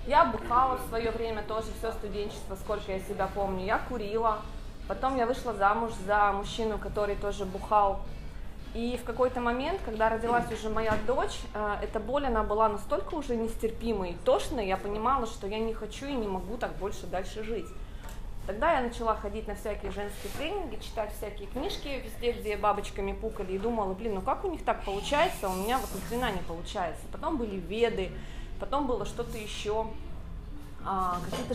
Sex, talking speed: female, 175 wpm